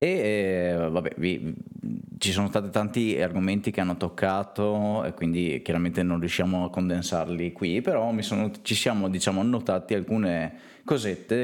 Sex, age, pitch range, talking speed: male, 20-39, 90-105 Hz, 150 wpm